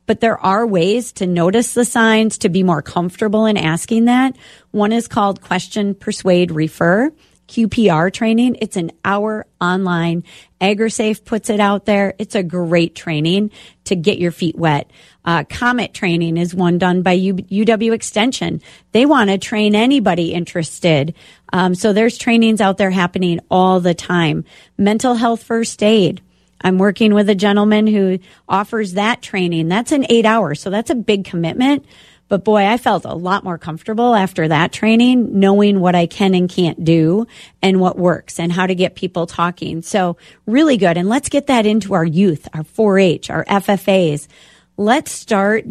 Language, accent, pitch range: English, American, 175-220 Hz